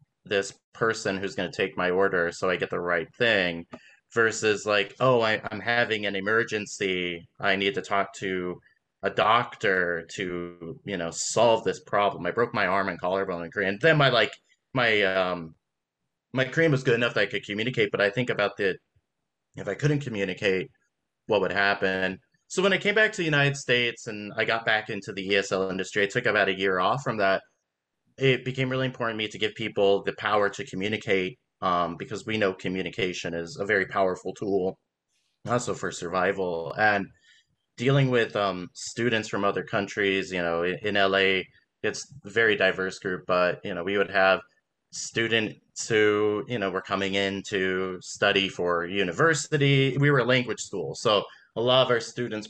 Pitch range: 95-115 Hz